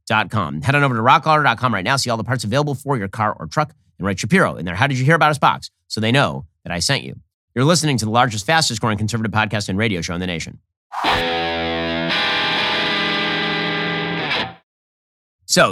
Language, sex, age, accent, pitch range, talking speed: English, male, 30-49, American, 90-135 Hz, 205 wpm